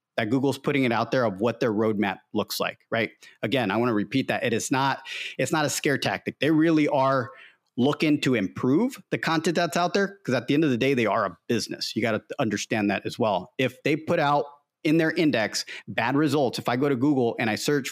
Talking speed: 245 wpm